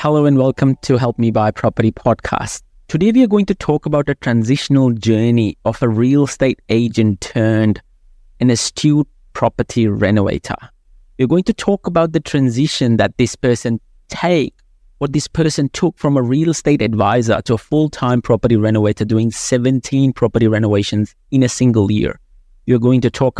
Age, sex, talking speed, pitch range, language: 30-49, male, 170 wpm, 110-145 Hz, English